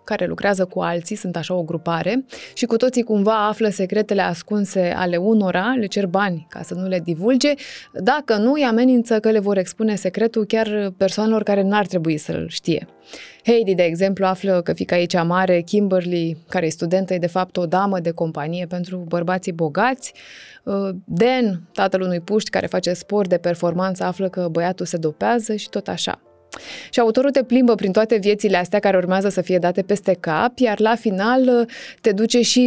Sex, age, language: female, 20-39, Romanian